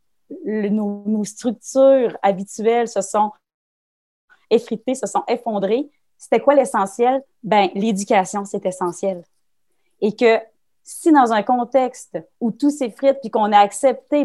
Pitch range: 195-245 Hz